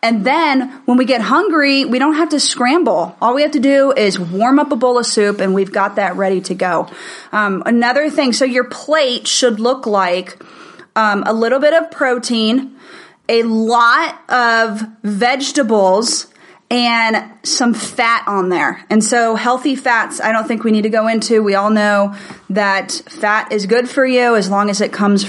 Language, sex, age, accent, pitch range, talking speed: English, female, 30-49, American, 205-250 Hz, 190 wpm